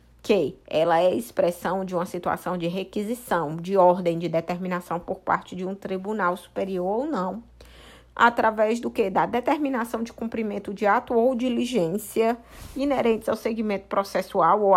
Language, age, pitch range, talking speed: Portuguese, 20-39, 180-235 Hz, 155 wpm